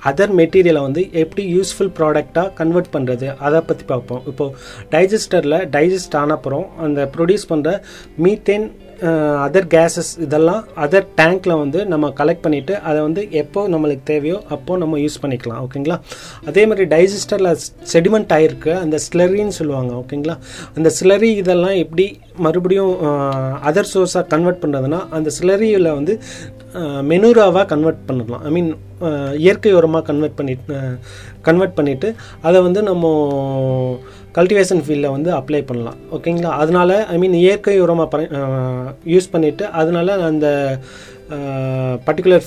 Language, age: Tamil, 30-49